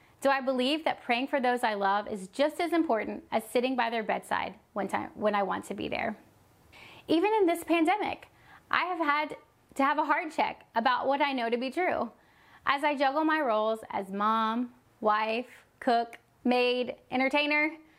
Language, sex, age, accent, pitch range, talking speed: English, female, 30-49, American, 230-300 Hz, 180 wpm